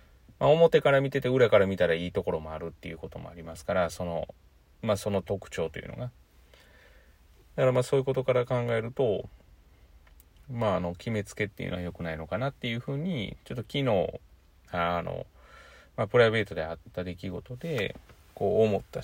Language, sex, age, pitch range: Japanese, male, 30-49, 85-115 Hz